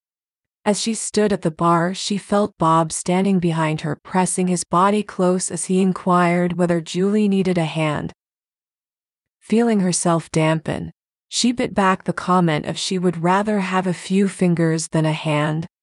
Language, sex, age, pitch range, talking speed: English, female, 30-49, 170-195 Hz, 165 wpm